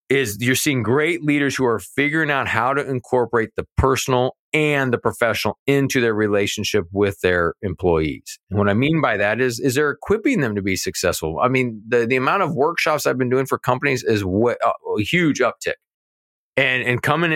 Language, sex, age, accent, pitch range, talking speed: English, male, 30-49, American, 110-140 Hz, 200 wpm